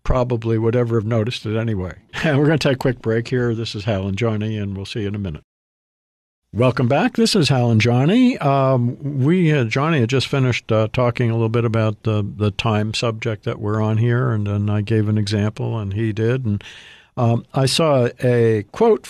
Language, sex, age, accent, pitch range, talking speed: English, male, 50-69, American, 105-130 Hz, 215 wpm